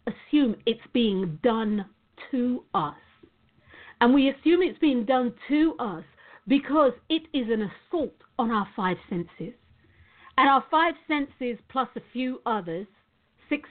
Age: 50-69